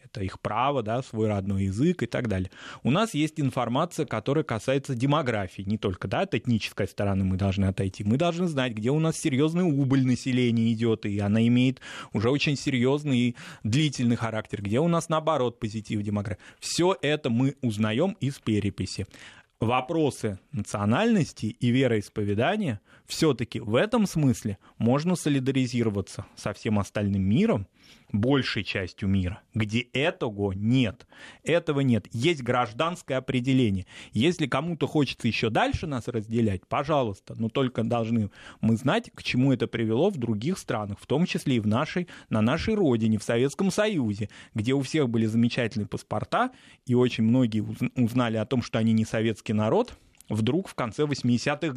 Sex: male